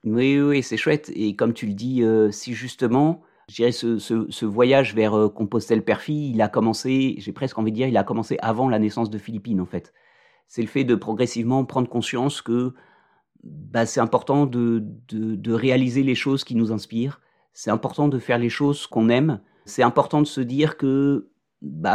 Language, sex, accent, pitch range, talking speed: French, male, French, 110-135 Hz, 200 wpm